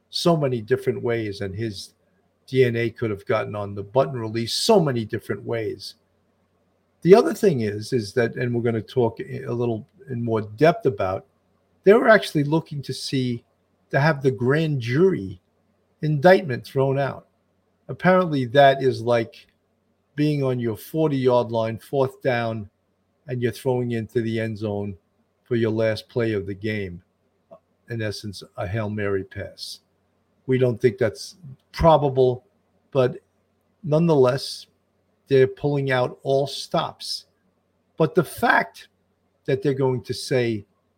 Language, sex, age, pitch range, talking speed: English, male, 50-69, 105-135 Hz, 150 wpm